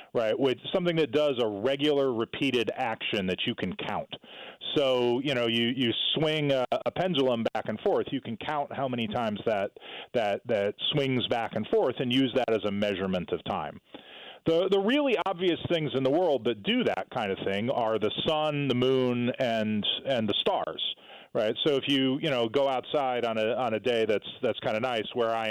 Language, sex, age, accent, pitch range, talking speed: English, male, 40-59, American, 105-140 Hz, 210 wpm